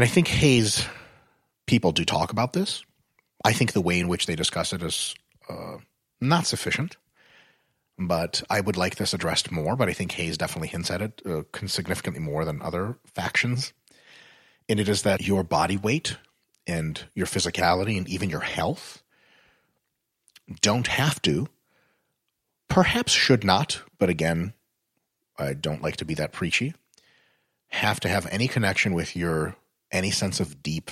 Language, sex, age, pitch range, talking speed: English, male, 30-49, 90-120 Hz, 160 wpm